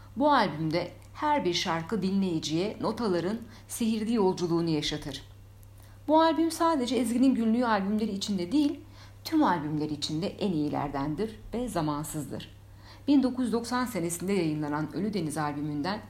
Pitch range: 140-185 Hz